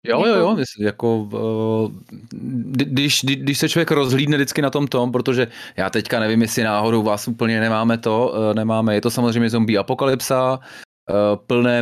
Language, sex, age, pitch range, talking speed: Czech, male, 30-49, 100-120 Hz, 150 wpm